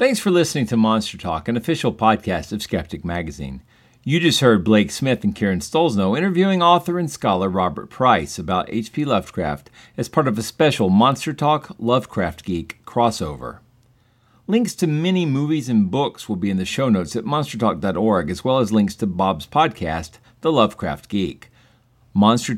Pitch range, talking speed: 95-130 Hz, 170 wpm